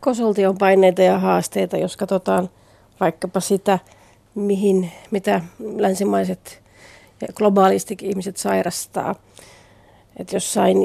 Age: 40-59